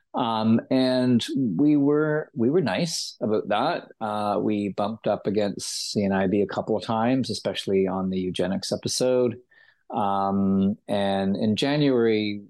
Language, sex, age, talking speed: English, male, 30-49, 135 wpm